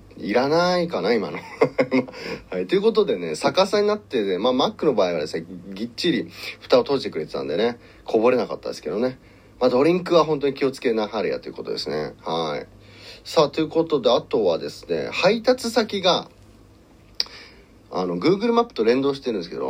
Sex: male